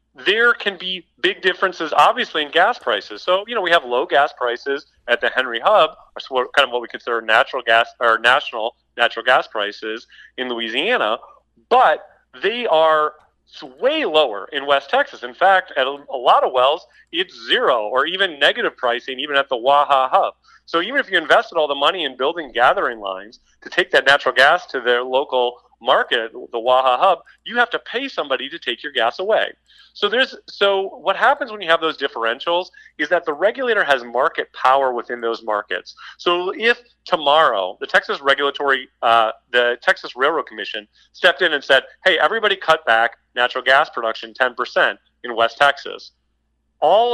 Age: 40-59